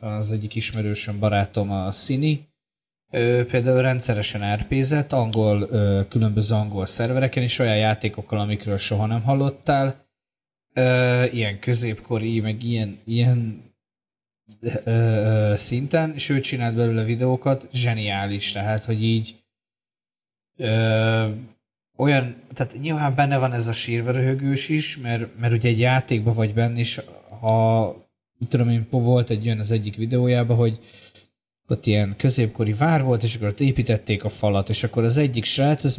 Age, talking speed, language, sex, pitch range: 20-39, 130 wpm, Hungarian, male, 105-125 Hz